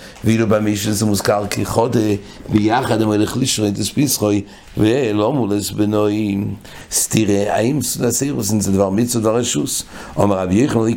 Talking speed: 130 wpm